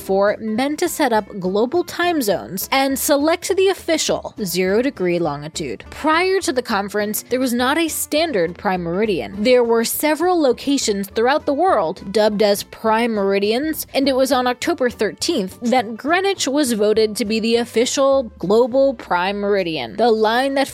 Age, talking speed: 20-39, 160 wpm